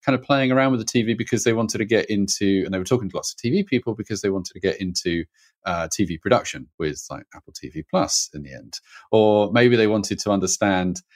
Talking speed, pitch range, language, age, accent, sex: 240 wpm, 95-125 Hz, English, 30-49, British, male